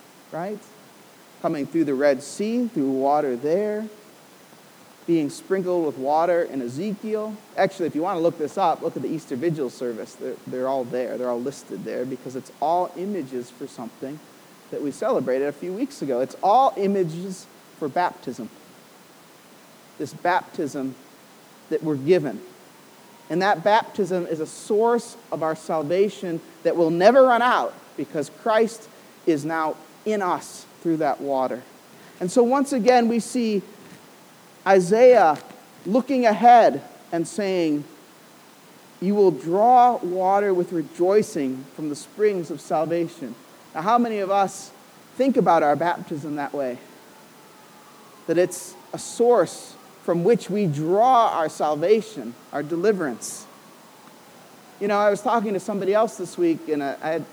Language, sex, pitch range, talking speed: English, male, 155-215 Hz, 150 wpm